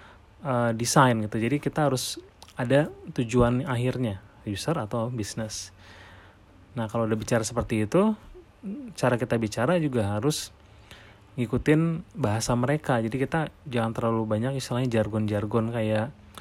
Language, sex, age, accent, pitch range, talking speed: Indonesian, male, 30-49, native, 105-130 Hz, 125 wpm